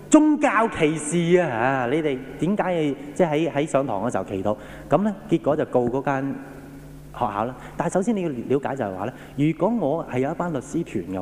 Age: 30-49